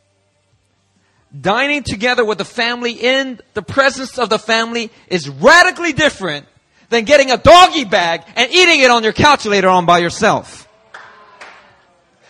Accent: American